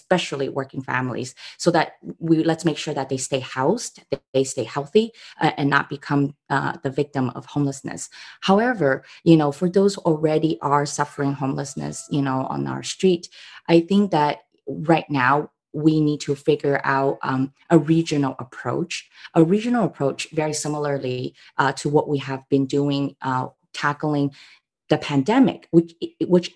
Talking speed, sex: 165 wpm, female